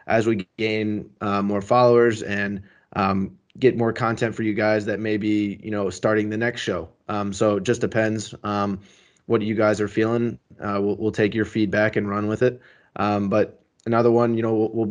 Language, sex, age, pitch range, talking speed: English, male, 20-39, 105-115 Hz, 205 wpm